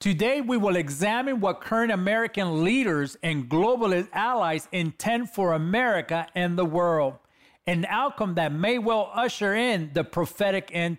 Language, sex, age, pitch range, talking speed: English, male, 40-59, 170-220 Hz, 145 wpm